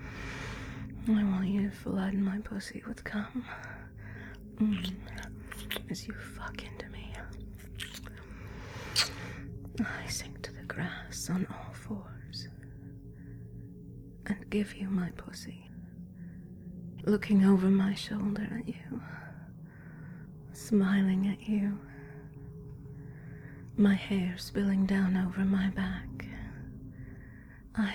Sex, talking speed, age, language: female, 95 wpm, 30-49, English